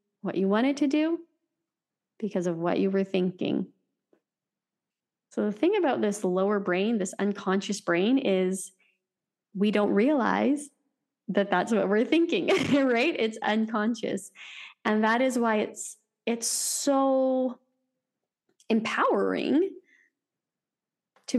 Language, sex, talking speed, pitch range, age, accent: English, female, 120 wpm, 190-240 Hz, 20-39, American